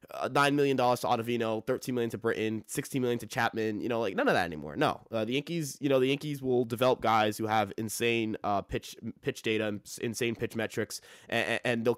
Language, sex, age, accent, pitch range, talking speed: English, male, 20-39, American, 105-125 Hz, 220 wpm